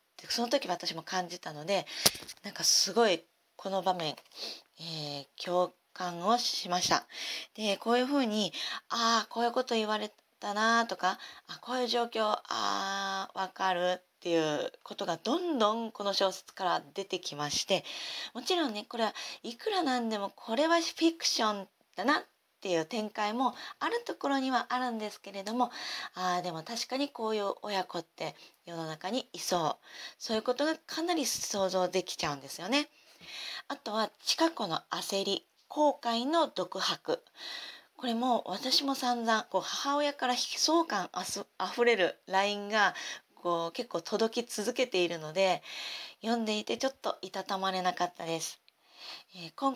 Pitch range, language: 180-245 Hz, Japanese